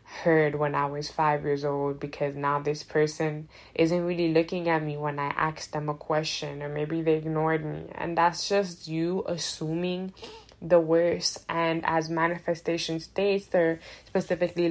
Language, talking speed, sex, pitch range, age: English, 165 wpm, female, 155-175 Hz, 10-29